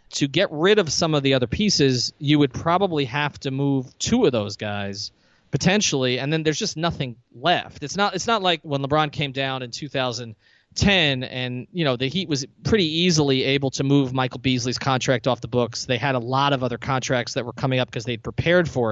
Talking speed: 220 wpm